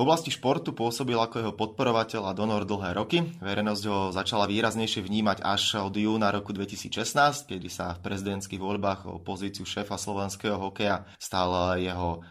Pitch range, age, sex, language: 95-115 Hz, 20-39, male, Slovak